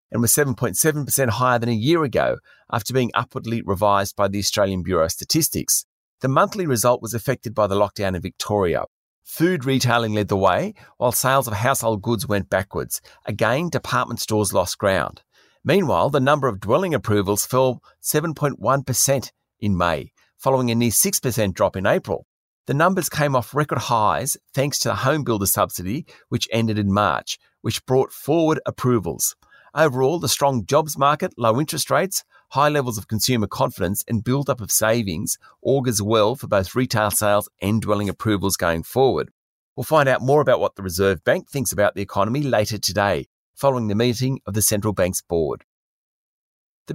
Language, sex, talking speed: English, male, 170 wpm